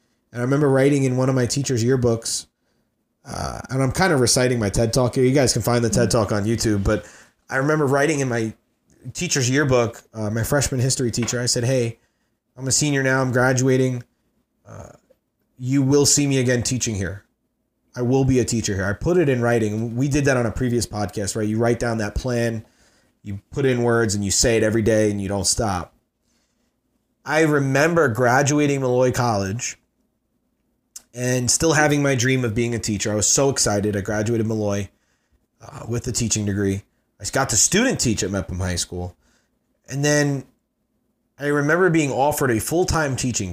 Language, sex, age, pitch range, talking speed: English, male, 30-49, 110-135 Hz, 195 wpm